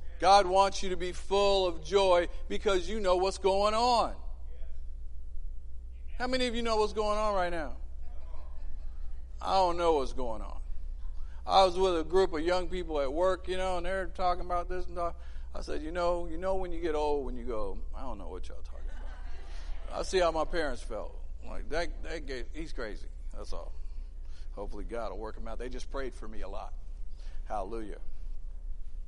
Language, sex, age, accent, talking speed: English, male, 50-69, American, 200 wpm